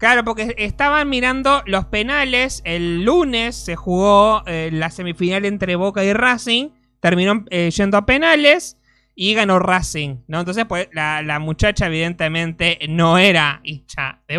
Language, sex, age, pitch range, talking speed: Spanish, male, 20-39, 140-190 Hz, 150 wpm